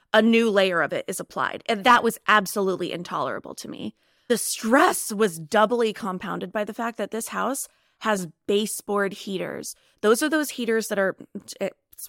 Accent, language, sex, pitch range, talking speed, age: American, English, female, 200-240 Hz, 175 wpm, 20-39